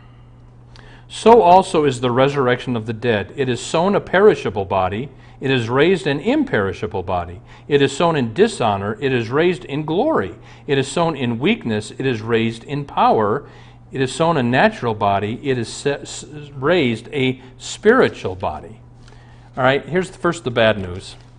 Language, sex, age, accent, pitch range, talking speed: English, male, 50-69, American, 115-135 Hz, 175 wpm